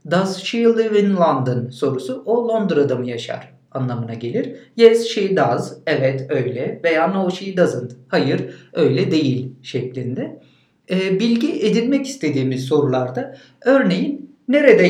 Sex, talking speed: male, 130 wpm